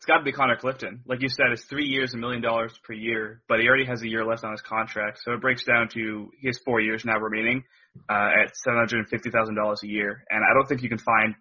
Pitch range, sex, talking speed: 110-125 Hz, male, 260 wpm